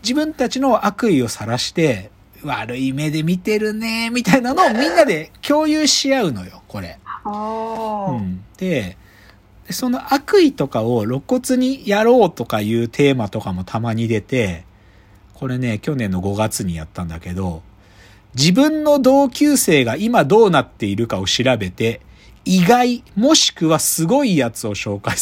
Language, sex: Japanese, male